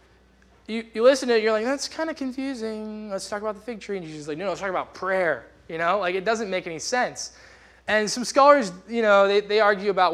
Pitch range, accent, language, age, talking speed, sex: 145-190 Hz, American, English, 20-39, 260 wpm, male